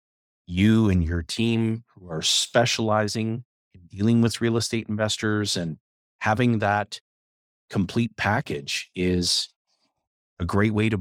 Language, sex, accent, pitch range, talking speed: English, male, American, 95-115 Hz, 125 wpm